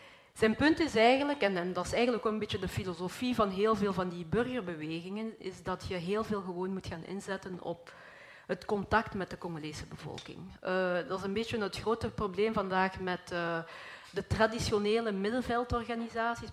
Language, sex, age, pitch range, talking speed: Dutch, female, 40-59, 185-220 Hz, 180 wpm